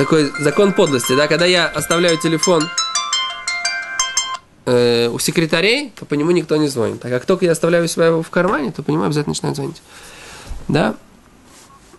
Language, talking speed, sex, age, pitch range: Russian, 155 wpm, male, 20-39, 160-220 Hz